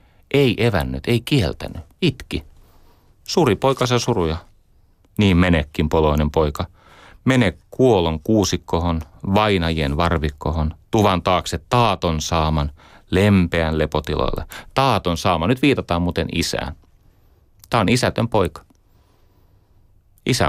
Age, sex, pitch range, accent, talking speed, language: 30-49, male, 80-100 Hz, native, 100 wpm, Finnish